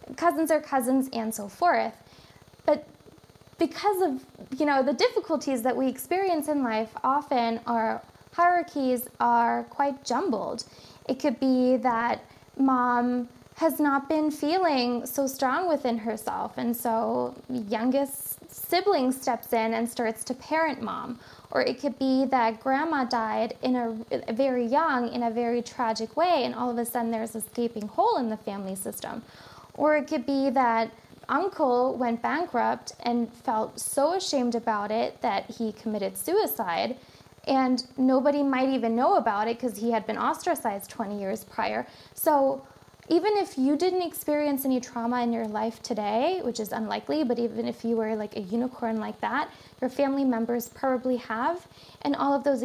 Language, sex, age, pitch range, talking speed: English, female, 20-39, 230-280 Hz, 165 wpm